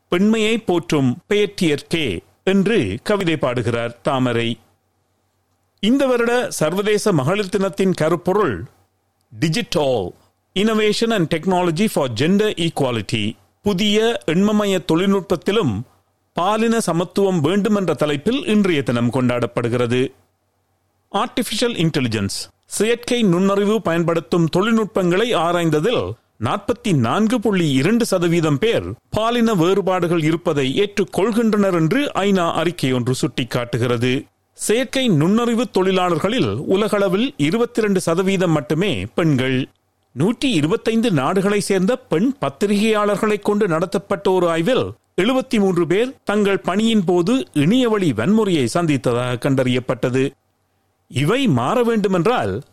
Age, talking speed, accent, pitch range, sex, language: 40-59, 90 wpm, native, 130-210 Hz, male, Tamil